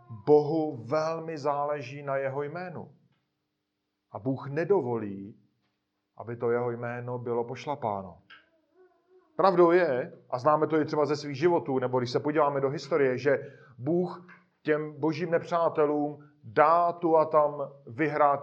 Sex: male